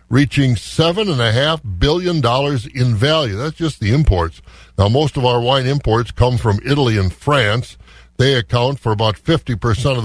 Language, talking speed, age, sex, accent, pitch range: English, 155 wpm, 60-79, male, American, 100-135 Hz